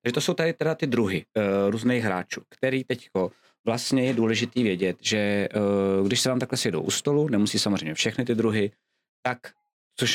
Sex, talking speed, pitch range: male, 190 wpm, 95-120 Hz